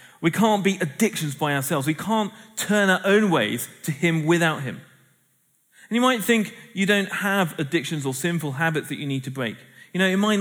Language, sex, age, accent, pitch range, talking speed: English, male, 30-49, British, 130-180 Hz, 210 wpm